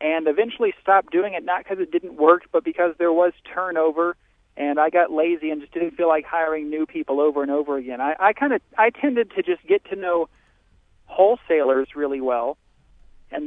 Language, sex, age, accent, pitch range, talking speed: English, male, 40-59, American, 150-185 Hz, 205 wpm